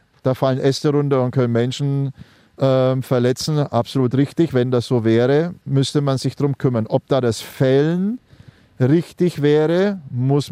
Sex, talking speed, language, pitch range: male, 155 wpm, German, 130-155 Hz